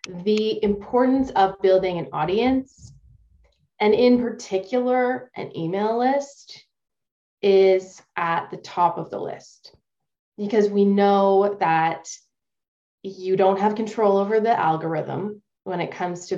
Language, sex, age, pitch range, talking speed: English, female, 20-39, 180-215 Hz, 125 wpm